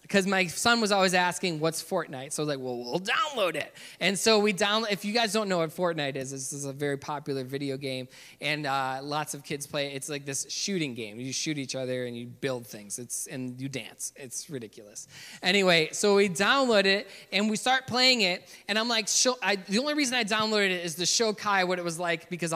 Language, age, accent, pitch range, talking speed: English, 20-39, American, 160-210 Hz, 240 wpm